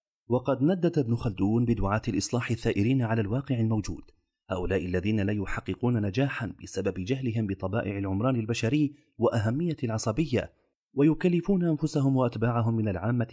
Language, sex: Arabic, male